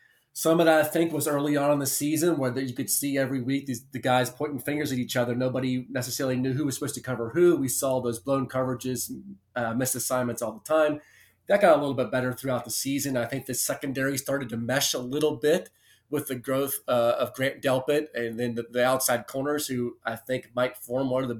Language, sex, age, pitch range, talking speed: English, male, 30-49, 125-150 Hz, 240 wpm